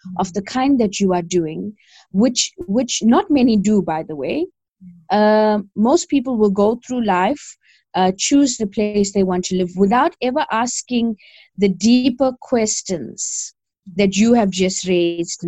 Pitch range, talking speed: 190-240 Hz, 160 wpm